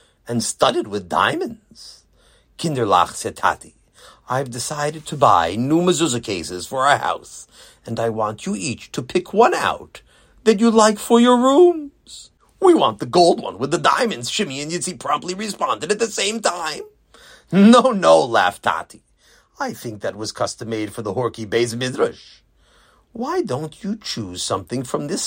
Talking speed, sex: 170 wpm, male